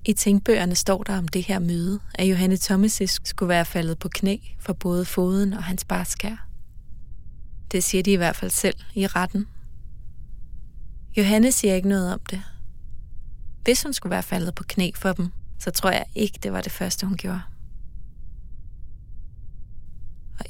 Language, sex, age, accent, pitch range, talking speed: Danish, female, 20-39, native, 165-195 Hz, 165 wpm